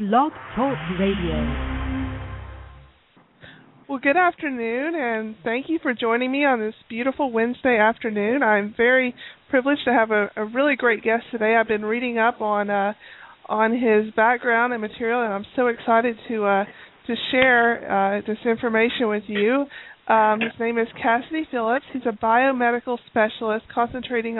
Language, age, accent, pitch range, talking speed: English, 40-59, American, 215-245 Hz, 150 wpm